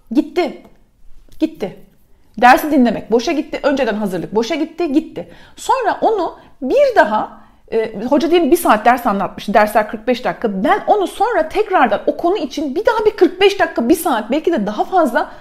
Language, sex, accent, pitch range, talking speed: Turkish, female, native, 235-325 Hz, 170 wpm